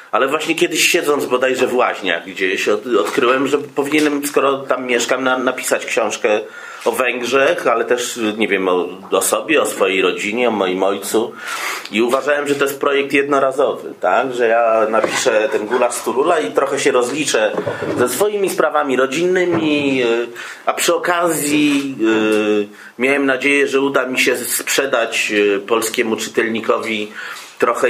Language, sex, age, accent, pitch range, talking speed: Polish, male, 30-49, native, 110-150 Hz, 140 wpm